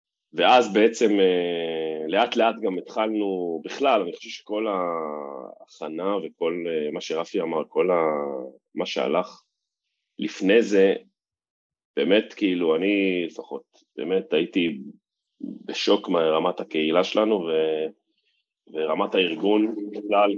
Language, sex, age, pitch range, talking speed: Hebrew, male, 30-49, 80-100 Hz, 100 wpm